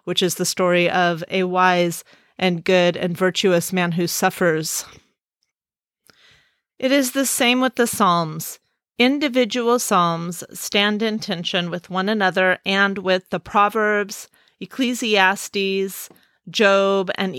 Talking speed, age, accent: 125 wpm, 30-49, American